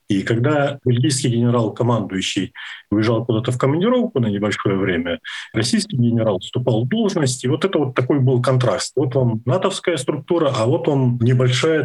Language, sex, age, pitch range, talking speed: Russian, male, 40-59, 120-135 Hz, 155 wpm